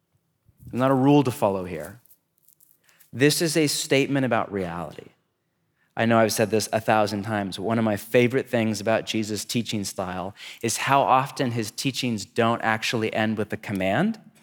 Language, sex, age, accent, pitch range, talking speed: English, male, 30-49, American, 110-140 Hz, 170 wpm